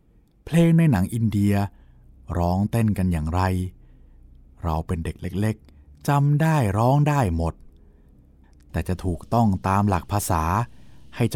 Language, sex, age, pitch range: Thai, male, 20-39, 75-110 Hz